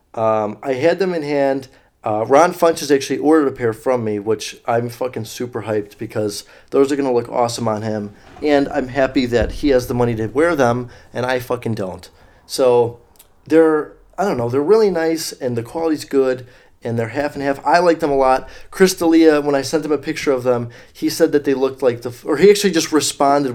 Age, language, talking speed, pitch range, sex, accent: 30-49, English, 225 wpm, 115-145 Hz, male, American